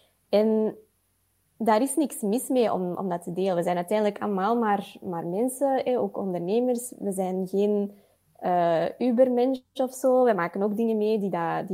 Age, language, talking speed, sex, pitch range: 20-39, English, 175 wpm, female, 185-245 Hz